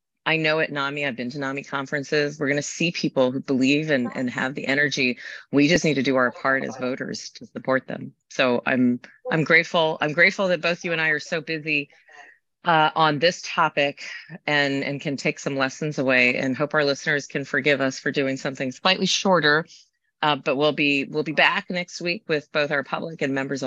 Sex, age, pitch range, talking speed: female, 30-49, 140-175 Hz, 215 wpm